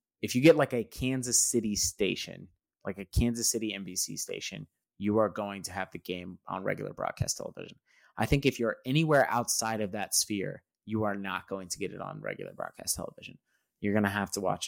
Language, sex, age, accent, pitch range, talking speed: English, male, 30-49, American, 95-110 Hz, 210 wpm